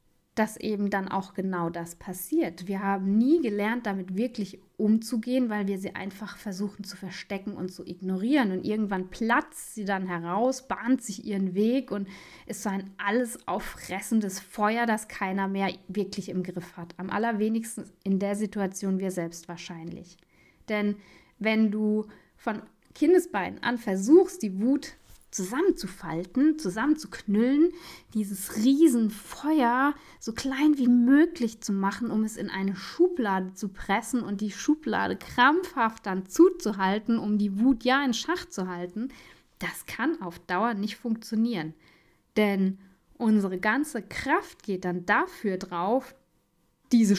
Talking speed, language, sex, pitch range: 140 wpm, German, female, 190-245 Hz